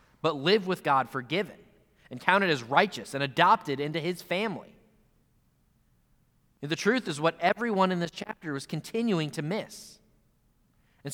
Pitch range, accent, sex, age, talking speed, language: 135-185 Hz, American, male, 30-49, 145 wpm, English